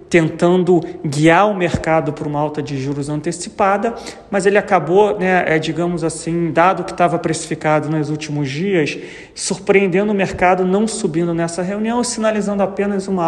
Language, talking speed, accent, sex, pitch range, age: Portuguese, 150 wpm, Brazilian, male, 155-190 Hz, 40-59